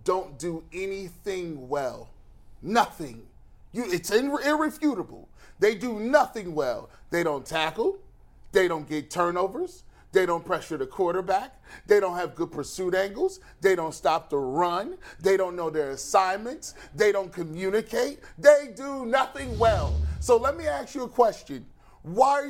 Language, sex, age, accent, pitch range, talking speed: English, male, 30-49, American, 175-280 Hz, 145 wpm